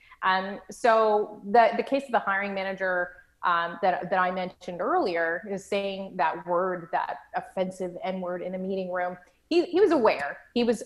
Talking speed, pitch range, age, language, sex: 180 wpm, 185-225 Hz, 30-49, English, female